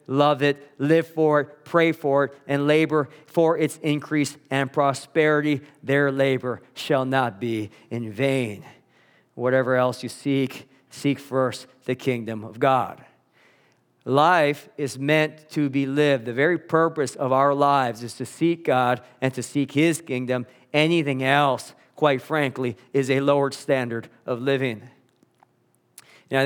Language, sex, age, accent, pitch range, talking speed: English, male, 40-59, American, 125-145 Hz, 145 wpm